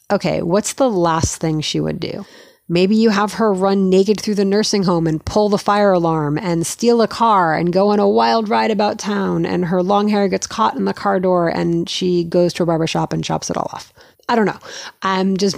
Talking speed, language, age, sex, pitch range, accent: 240 wpm, English, 30-49, female, 170-205 Hz, American